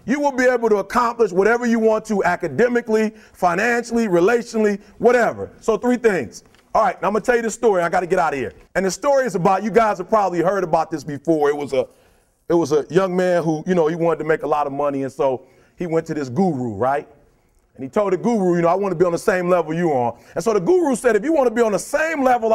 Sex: male